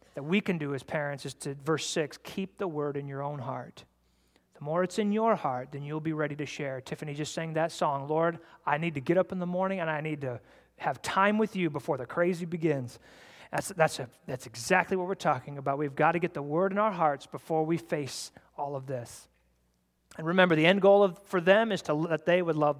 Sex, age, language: male, 30-49, English